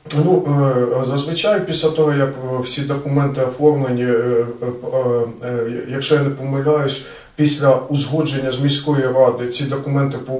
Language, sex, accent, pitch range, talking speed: Russian, male, native, 125-145 Hz, 110 wpm